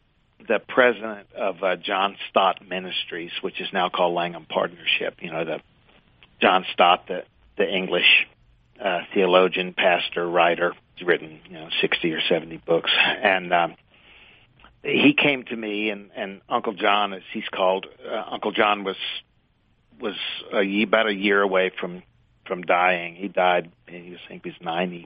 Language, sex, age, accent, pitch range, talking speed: English, male, 50-69, American, 90-110 Hz, 160 wpm